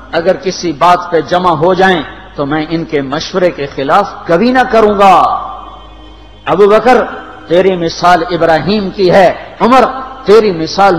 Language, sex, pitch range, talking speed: Urdu, male, 165-220 Hz, 155 wpm